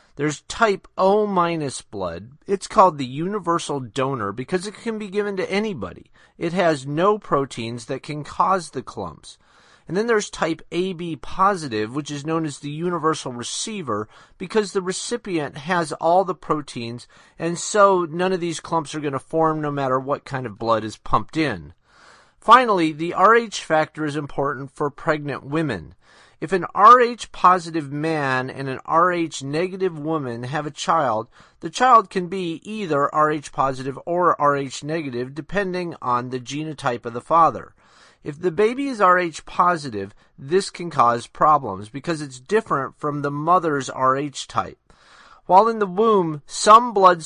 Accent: American